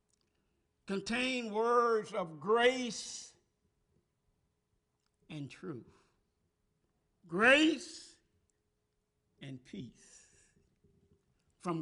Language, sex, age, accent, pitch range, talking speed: English, male, 60-79, American, 140-235 Hz, 50 wpm